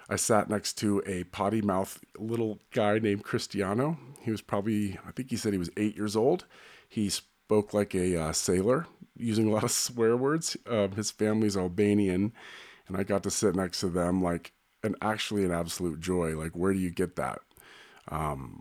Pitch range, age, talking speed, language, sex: 90-110 Hz, 40-59, 195 wpm, English, male